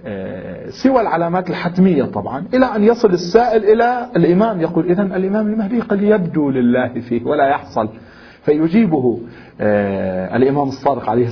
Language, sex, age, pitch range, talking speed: Arabic, male, 40-59, 115-170 Hz, 125 wpm